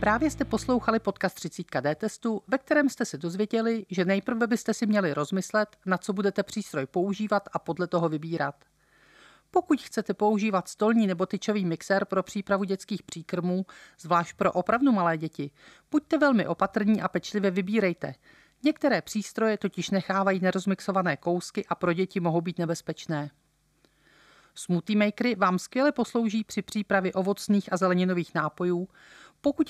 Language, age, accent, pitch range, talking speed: Czech, 40-59, native, 175-215 Hz, 145 wpm